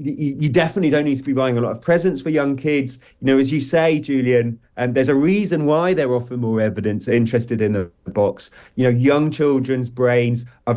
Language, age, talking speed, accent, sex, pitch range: English, 30-49, 215 wpm, British, male, 120-150 Hz